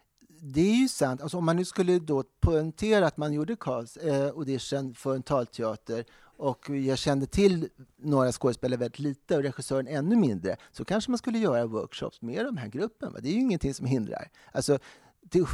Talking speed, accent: 200 wpm, native